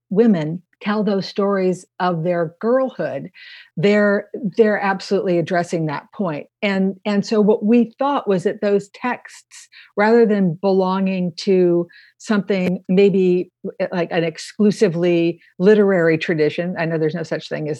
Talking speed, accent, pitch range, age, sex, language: 140 wpm, American, 175-205 Hz, 50-69, female, English